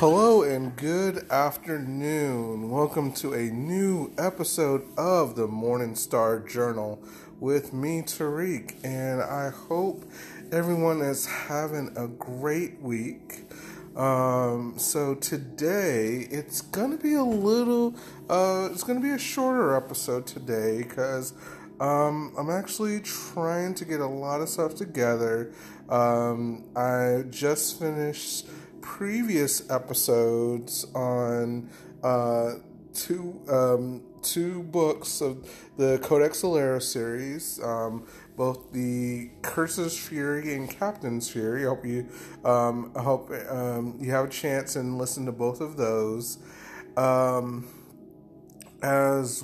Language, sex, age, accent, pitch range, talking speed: English, male, 30-49, American, 120-160 Hz, 120 wpm